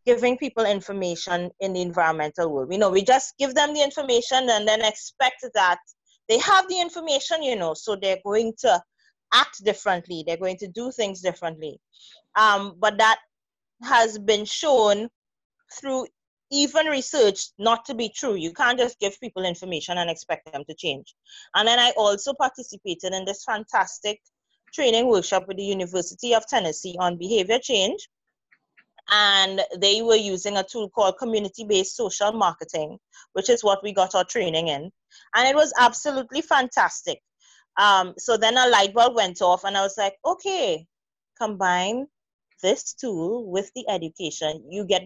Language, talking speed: English, 165 wpm